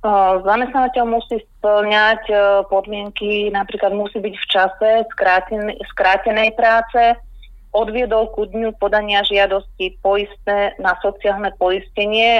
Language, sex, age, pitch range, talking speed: Slovak, female, 30-49, 195-220 Hz, 110 wpm